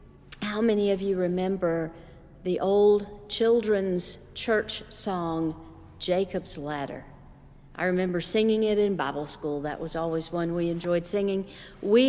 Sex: female